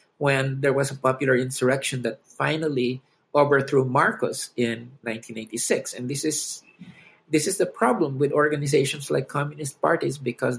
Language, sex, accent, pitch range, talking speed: English, male, Filipino, 120-155 Hz, 140 wpm